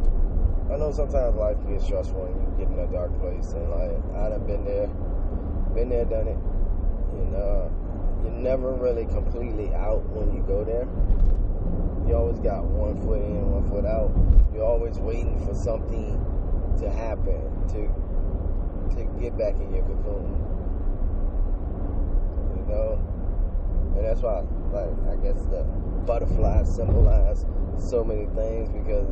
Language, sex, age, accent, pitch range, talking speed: English, male, 20-39, American, 80-95 Hz, 150 wpm